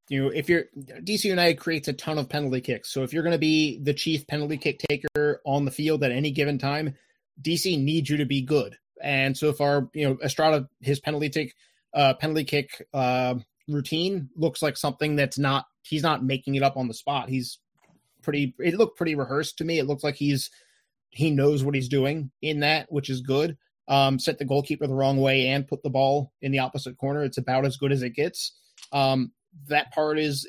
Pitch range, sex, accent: 135-150 Hz, male, American